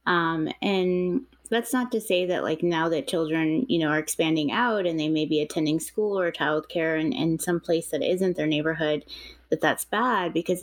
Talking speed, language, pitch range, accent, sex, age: 210 wpm, English, 150-175 Hz, American, female, 20-39